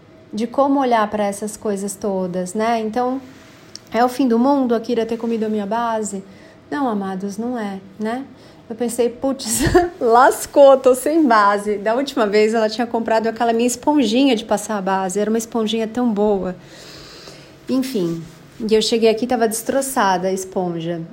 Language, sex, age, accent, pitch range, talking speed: Portuguese, female, 30-49, Brazilian, 210-260 Hz, 170 wpm